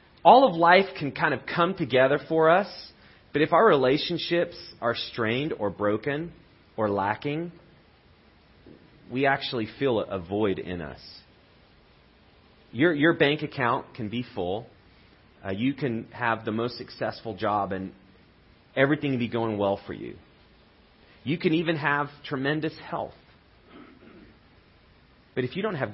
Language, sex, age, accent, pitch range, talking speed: English, male, 30-49, American, 110-145 Hz, 140 wpm